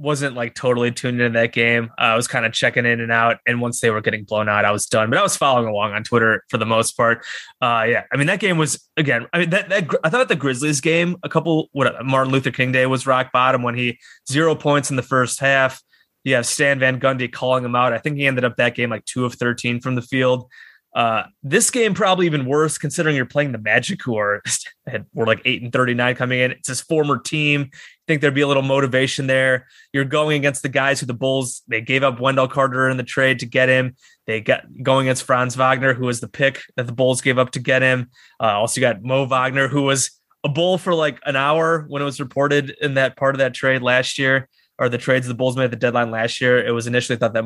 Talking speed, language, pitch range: 260 wpm, English, 120-140 Hz